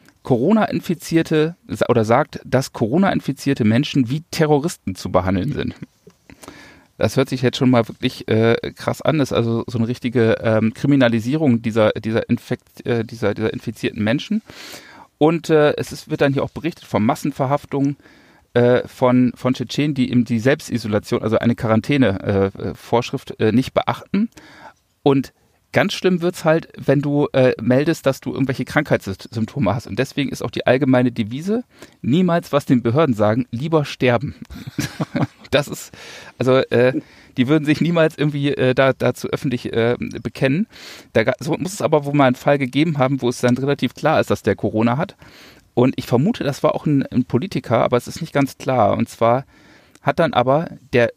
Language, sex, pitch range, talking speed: German, male, 120-145 Hz, 165 wpm